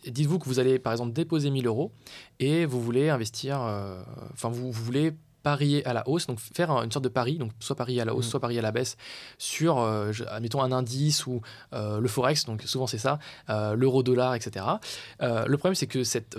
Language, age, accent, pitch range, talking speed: French, 20-39, French, 120-155 Hz, 230 wpm